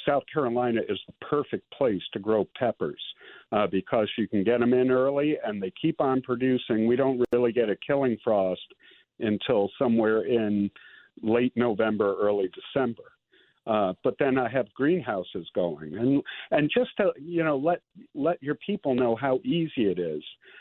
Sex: male